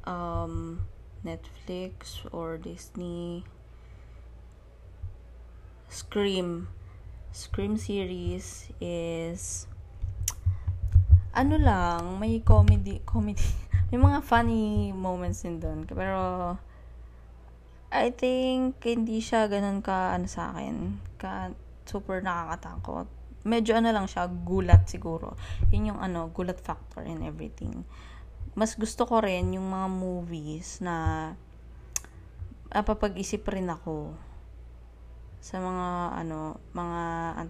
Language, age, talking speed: Filipino, 20-39, 100 wpm